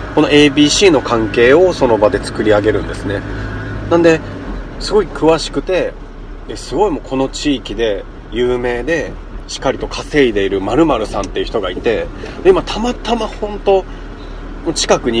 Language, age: Japanese, 40-59